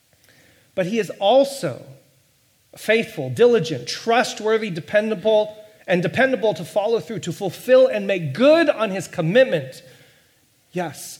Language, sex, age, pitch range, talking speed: English, male, 40-59, 130-200 Hz, 120 wpm